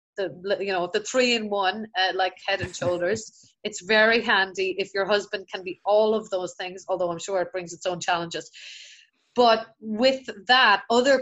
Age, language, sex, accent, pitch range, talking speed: 30-49, English, female, Irish, 190-240 Hz, 195 wpm